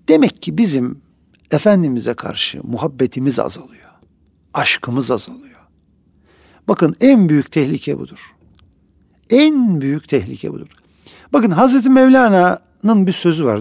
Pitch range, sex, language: 130-200 Hz, male, Turkish